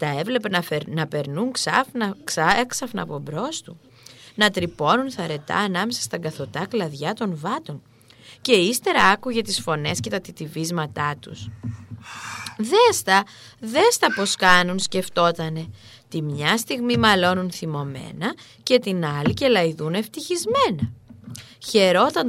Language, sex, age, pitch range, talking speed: Greek, female, 20-39, 155-215 Hz, 125 wpm